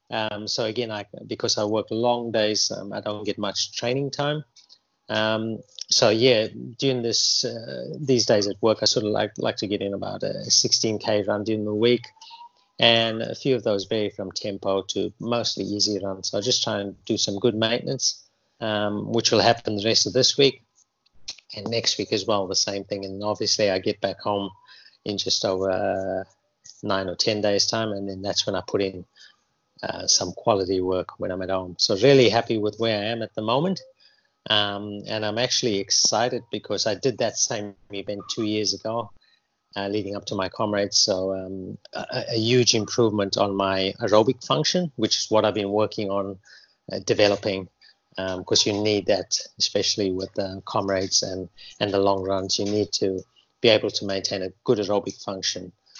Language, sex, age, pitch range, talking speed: English, male, 30-49, 100-115 Hz, 195 wpm